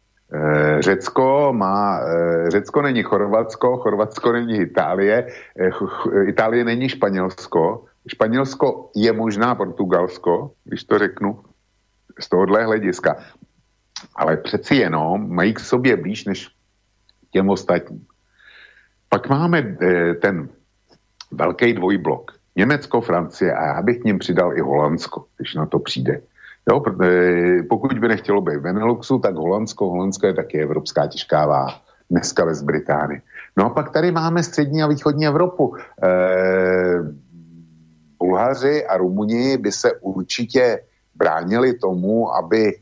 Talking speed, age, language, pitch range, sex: 120 wpm, 60-79, Slovak, 85-115 Hz, male